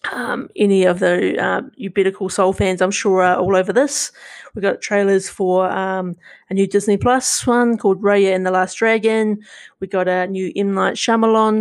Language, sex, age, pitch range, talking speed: English, female, 30-49, 190-225 Hz, 195 wpm